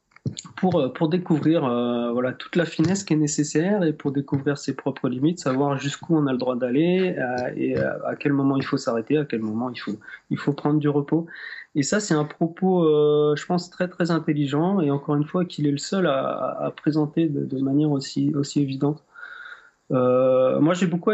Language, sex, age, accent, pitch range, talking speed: French, male, 30-49, French, 140-165 Hz, 215 wpm